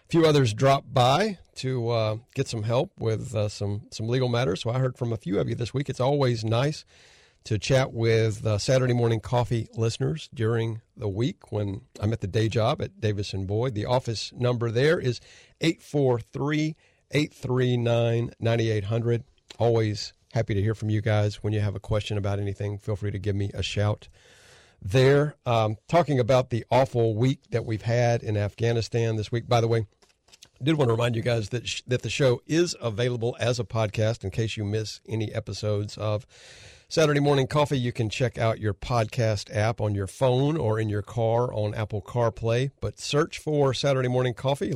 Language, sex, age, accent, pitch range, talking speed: English, male, 40-59, American, 110-130 Hz, 190 wpm